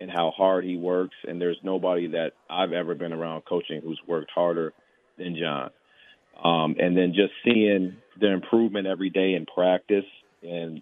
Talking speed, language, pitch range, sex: 170 wpm, English, 85-100 Hz, male